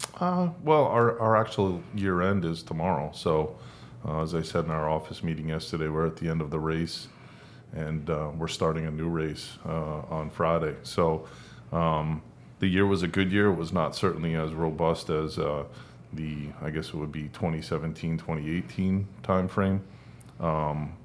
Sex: male